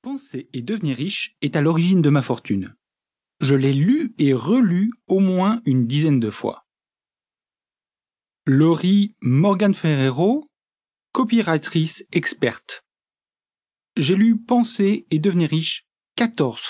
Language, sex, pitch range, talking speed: French, male, 135-210 Hz, 120 wpm